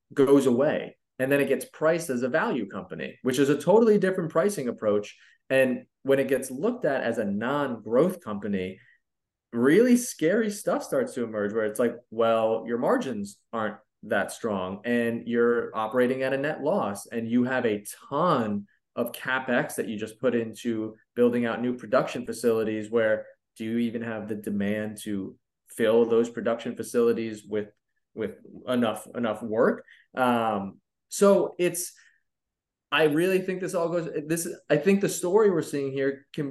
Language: English